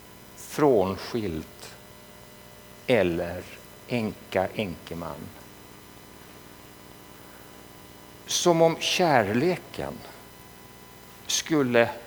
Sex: male